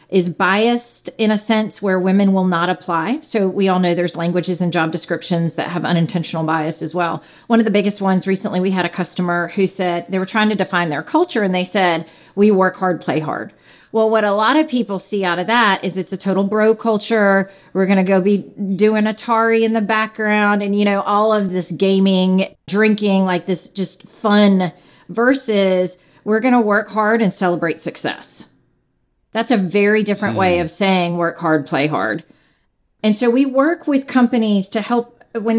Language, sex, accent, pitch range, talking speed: English, female, American, 180-225 Hz, 195 wpm